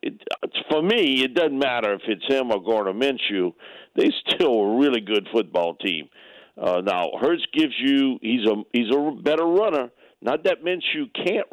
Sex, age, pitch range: male, 50-69, 95-150 Hz